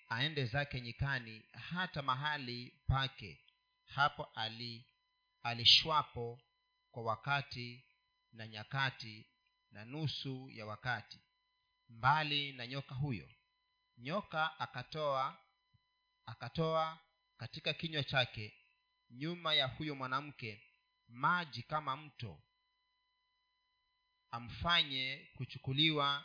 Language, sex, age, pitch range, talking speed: Swahili, male, 40-59, 125-180 Hz, 80 wpm